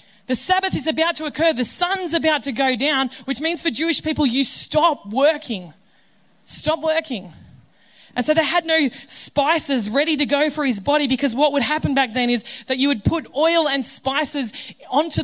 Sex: female